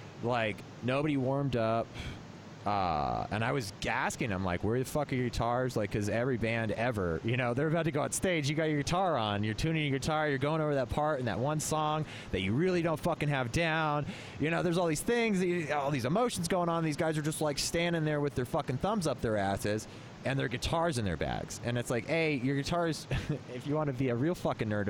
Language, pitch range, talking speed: English, 115-155 Hz, 245 wpm